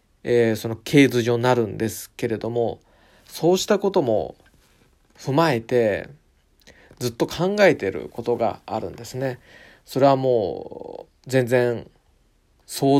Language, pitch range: Japanese, 110-140 Hz